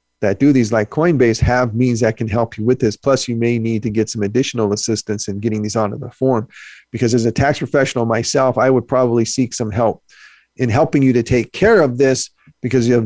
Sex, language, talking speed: male, English, 235 wpm